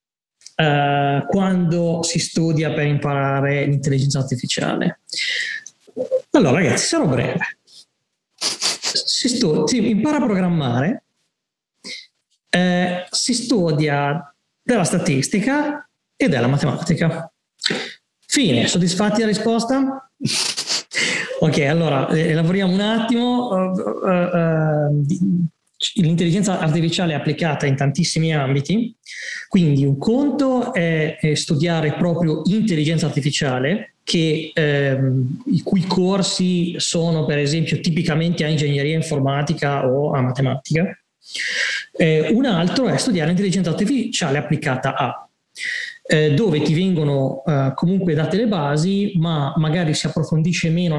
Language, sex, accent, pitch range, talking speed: Italian, male, native, 150-195 Hz, 100 wpm